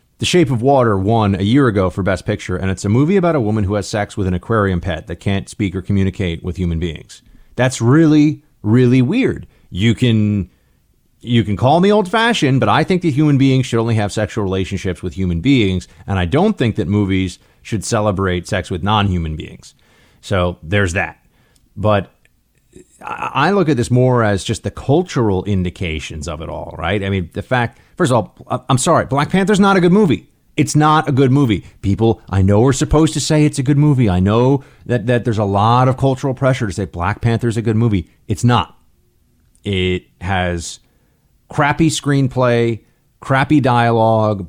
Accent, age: American, 30-49